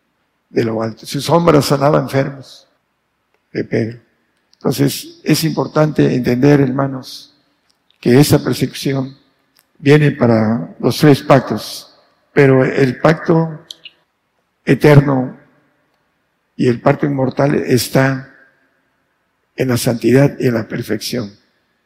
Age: 60-79